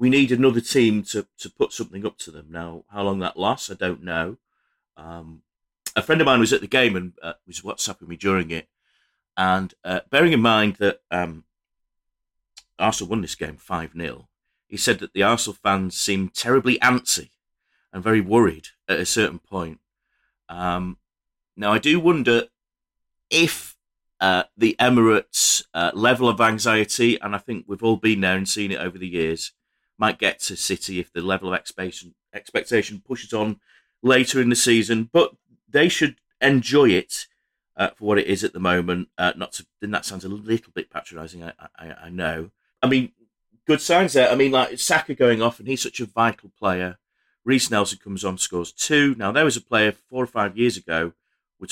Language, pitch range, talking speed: English, 90-115 Hz, 190 wpm